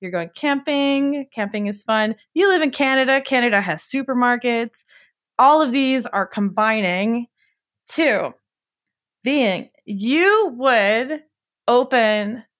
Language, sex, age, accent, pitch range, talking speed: English, female, 20-39, American, 190-255 Hz, 110 wpm